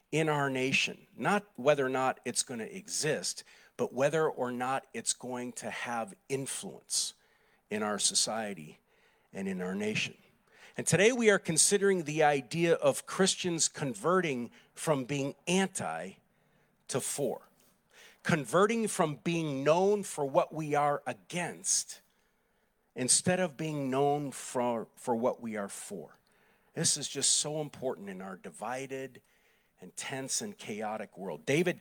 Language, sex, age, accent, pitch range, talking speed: English, male, 50-69, American, 130-175 Hz, 140 wpm